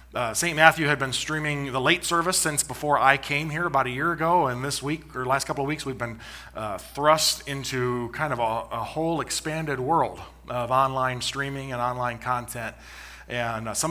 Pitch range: 125-160 Hz